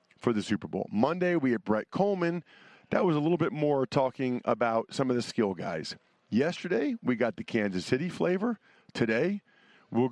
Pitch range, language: 115-155 Hz, English